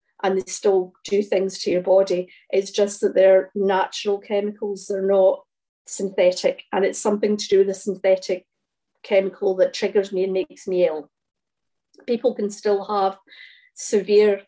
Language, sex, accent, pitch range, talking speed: English, female, British, 195-220 Hz, 160 wpm